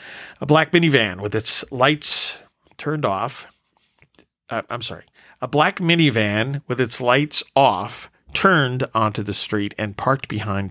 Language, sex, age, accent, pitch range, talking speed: English, male, 50-69, American, 110-150 Hz, 140 wpm